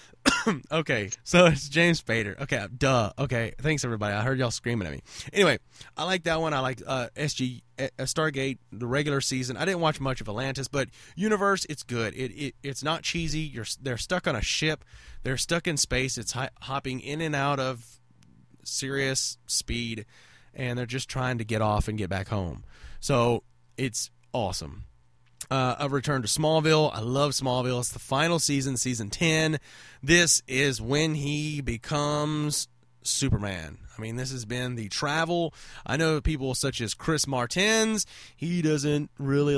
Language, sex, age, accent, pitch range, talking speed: English, male, 20-39, American, 115-150 Hz, 170 wpm